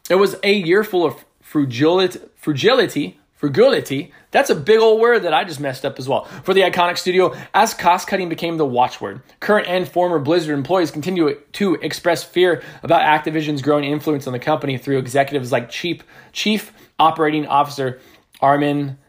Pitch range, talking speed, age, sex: 125-175 Hz, 175 wpm, 20-39, male